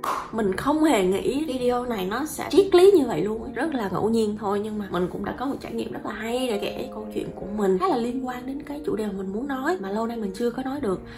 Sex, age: female, 20-39